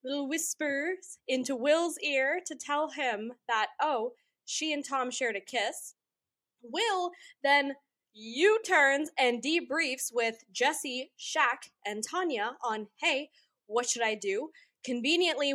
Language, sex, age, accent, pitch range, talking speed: English, female, 10-29, American, 245-320 Hz, 125 wpm